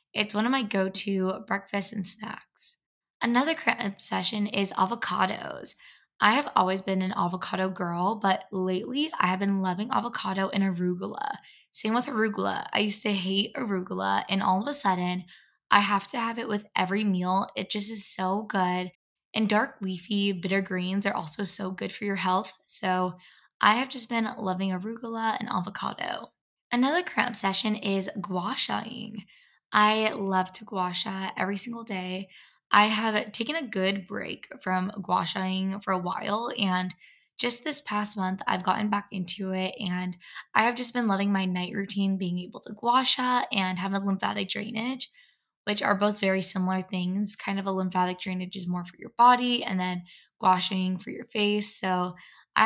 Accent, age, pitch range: American, 10-29, 185-220 Hz